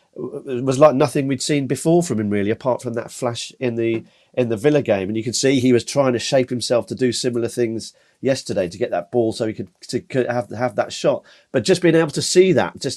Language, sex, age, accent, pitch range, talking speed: English, male, 40-59, British, 115-140 Hz, 260 wpm